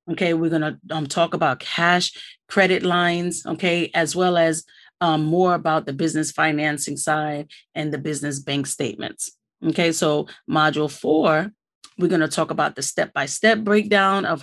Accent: American